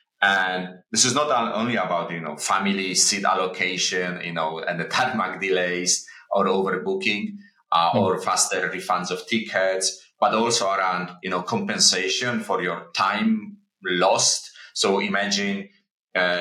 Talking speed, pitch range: 135 wpm, 90-110 Hz